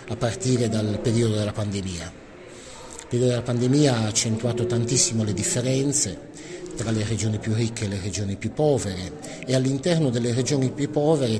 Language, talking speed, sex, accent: Italian, 165 wpm, male, native